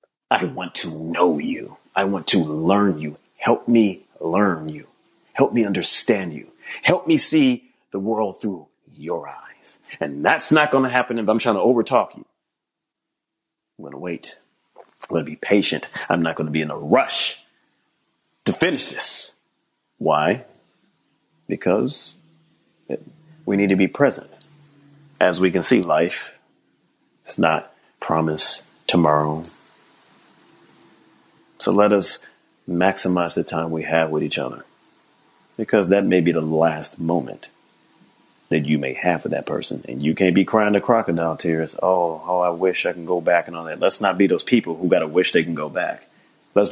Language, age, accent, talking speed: English, 30-49, American, 170 wpm